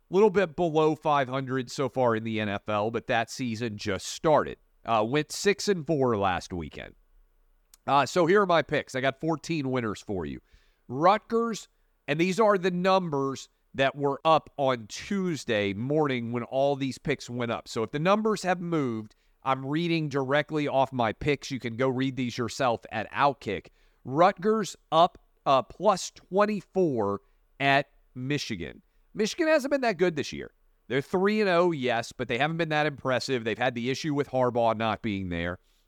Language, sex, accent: English, male, American